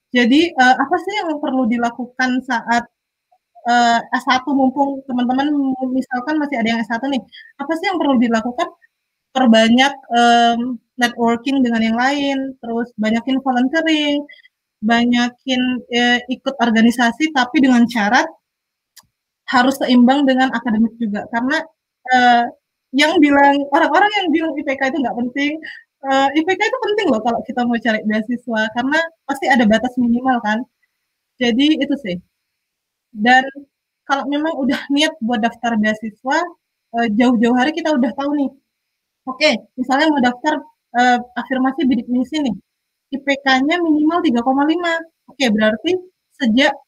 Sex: female